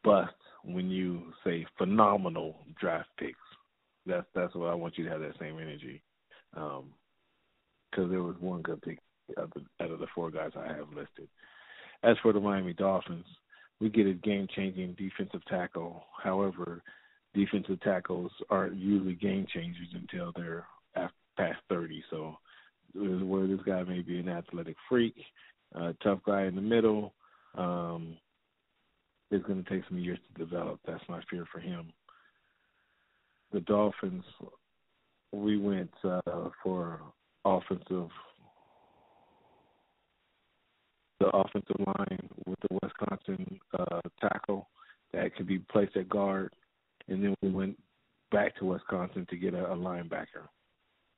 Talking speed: 140 wpm